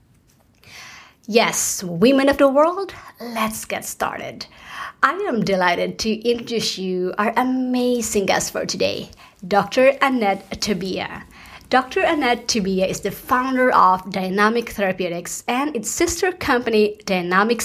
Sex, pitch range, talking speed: female, 195-250 Hz, 120 wpm